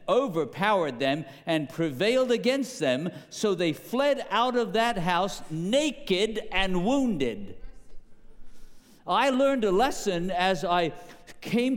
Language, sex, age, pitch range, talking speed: English, male, 50-69, 175-235 Hz, 115 wpm